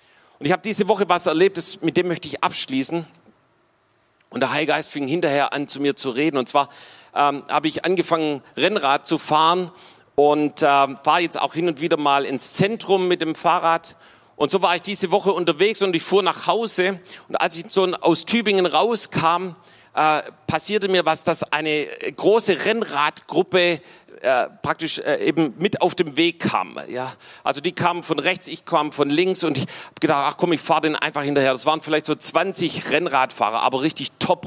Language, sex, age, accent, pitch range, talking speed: German, male, 40-59, German, 140-180 Hz, 195 wpm